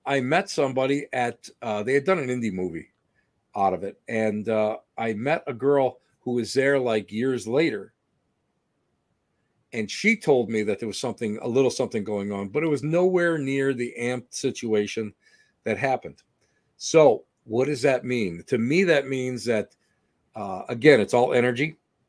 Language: English